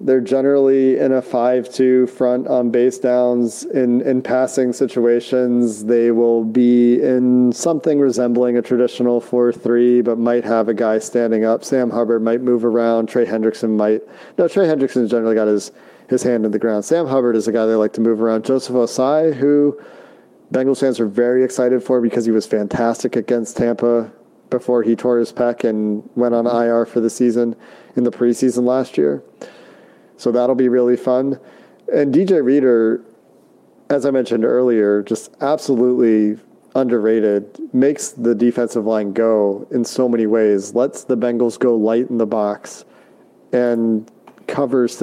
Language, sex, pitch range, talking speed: English, male, 115-125 Hz, 165 wpm